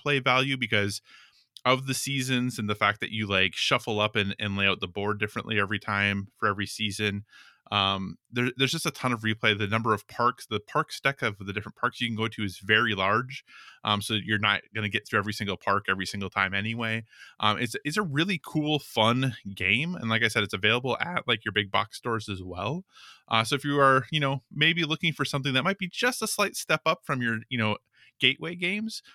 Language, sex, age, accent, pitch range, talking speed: English, male, 20-39, American, 100-130 Hz, 235 wpm